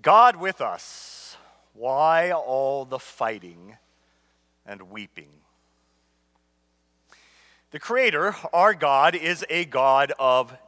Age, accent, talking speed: 40-59, American, 95 wpm